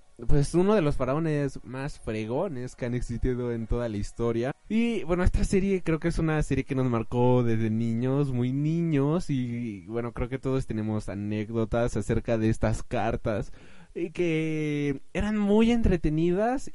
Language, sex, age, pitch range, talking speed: Spanish, male, 20-39, 120-155 Hz, 165 wpm